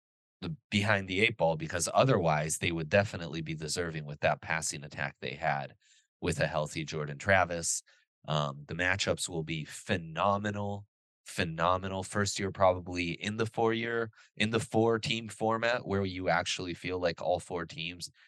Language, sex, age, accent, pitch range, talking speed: English, male, 20-39, American, 80-100 Hz, 160 wpm